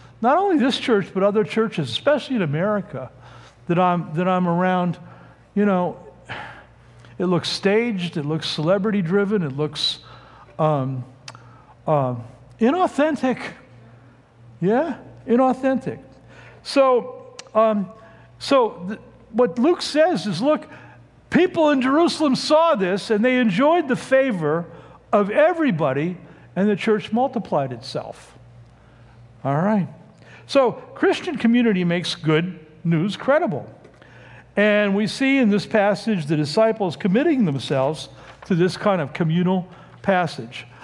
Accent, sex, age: American, male, 60-79